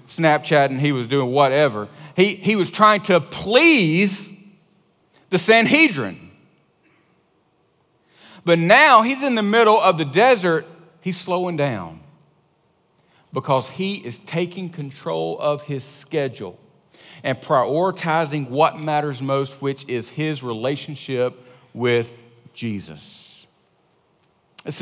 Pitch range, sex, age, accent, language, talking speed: 145-205 Hz, male, 40-59, American, English, 110 wpm